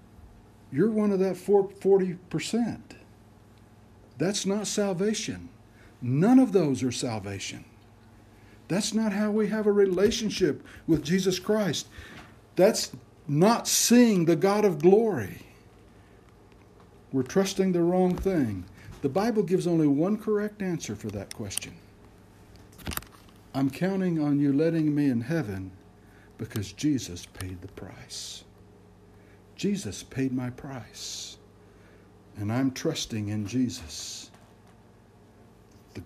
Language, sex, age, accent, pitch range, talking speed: English, male, 60-79, American, 100-155 Hz, 115 wpm